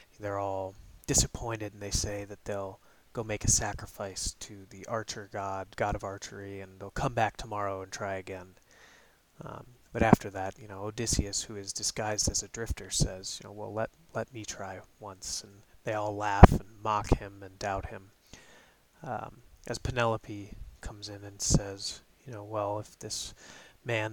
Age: 30-49